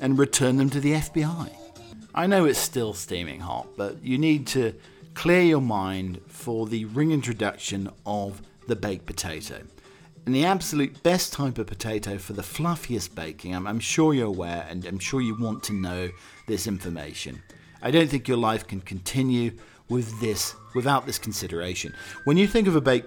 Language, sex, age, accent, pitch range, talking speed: English, male, 40-59, British, 100-130 Hz, 180 wpm